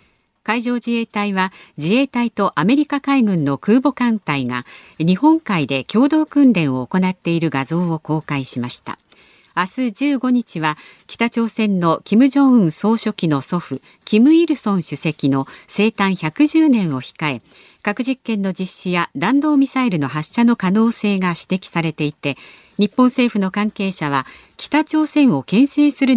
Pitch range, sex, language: 155-245 Hz, female, Japanese